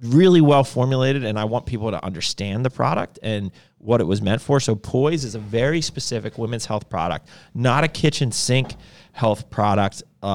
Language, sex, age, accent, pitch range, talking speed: English, male, 30-49, American, 100-135 Hz, 185 wpm